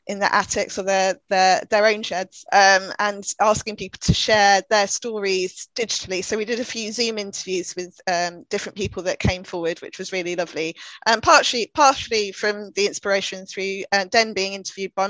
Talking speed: 195 wpm